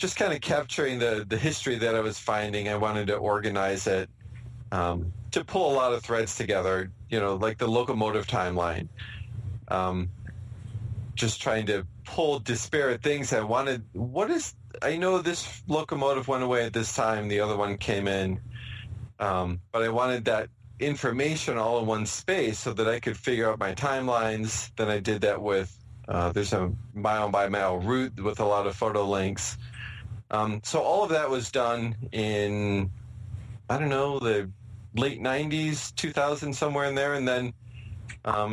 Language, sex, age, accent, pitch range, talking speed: English, male, 30-49, American, 105-125 Hz, 175 wpm